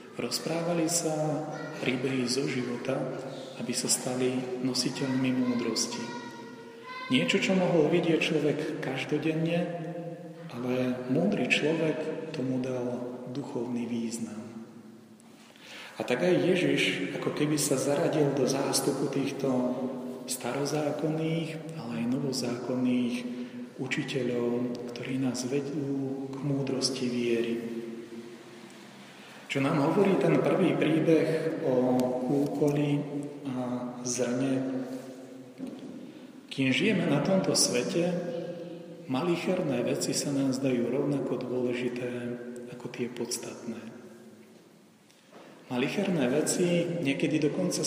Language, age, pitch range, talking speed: Slovak, 40-59, 125-150 Hz, 95 wpm